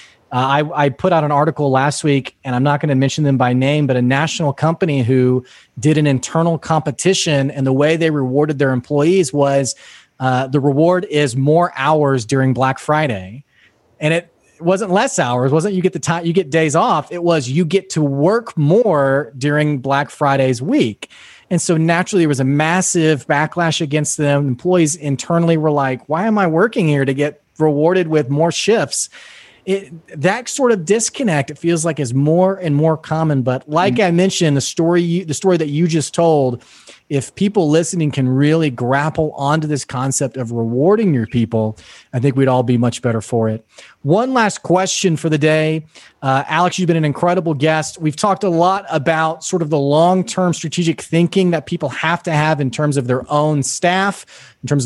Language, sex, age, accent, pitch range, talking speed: English, male, 30-49, American, 140-170 Hz, 195 wpm